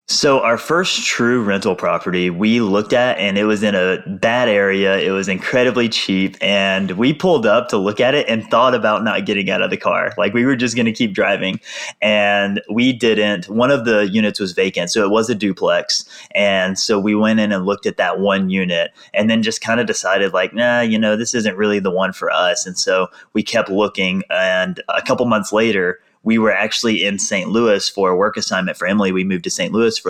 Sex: male